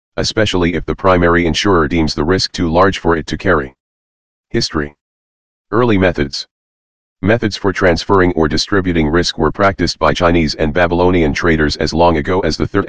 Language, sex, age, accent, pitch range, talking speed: English, male, 40-59, American, 75-95 Hz, 170 wpm